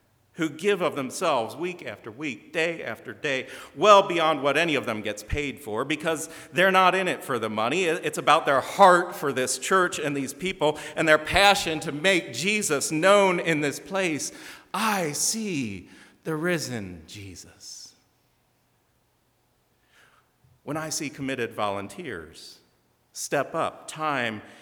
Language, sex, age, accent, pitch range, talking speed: English, male, 40-59, American, 145-190 Hz, 145 wpm